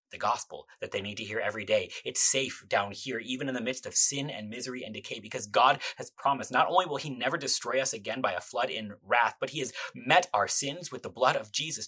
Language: English